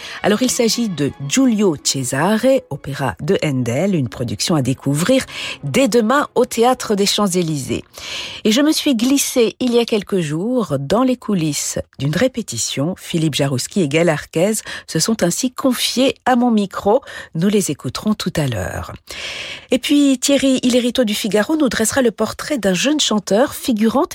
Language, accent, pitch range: French, French, 155-245 Hz